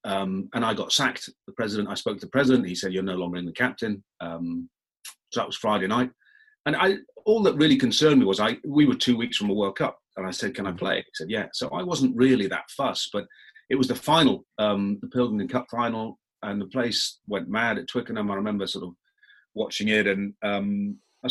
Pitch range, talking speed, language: 100-130 Hz, 235 wpm, English